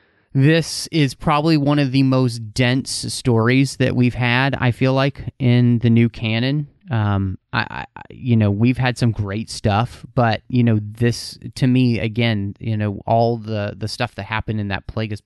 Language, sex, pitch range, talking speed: English, male, 105-130 Hz, 185 wpm